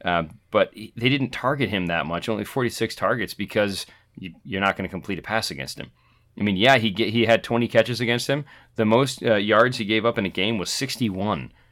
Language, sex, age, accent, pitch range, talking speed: English, male, 30-49, American, 95-115 Hz, 235 wpm